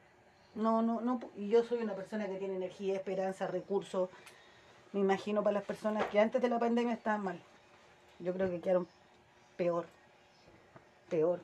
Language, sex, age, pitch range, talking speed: Spanish, female, 30-49, 190-235 Hz, 165 wpm